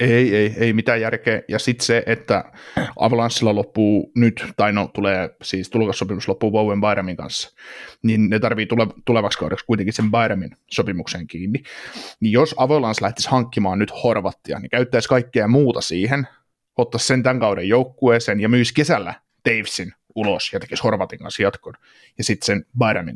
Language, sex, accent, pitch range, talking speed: Finnish, male, native, 105-120 Hz, 160 wpm